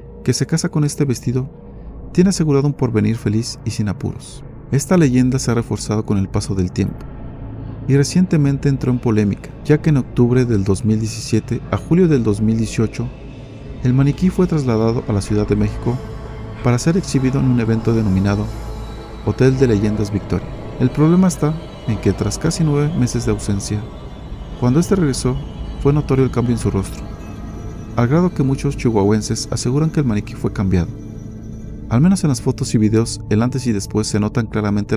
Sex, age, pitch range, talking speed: male, 40-59, 105-140 Hz, 180 wpm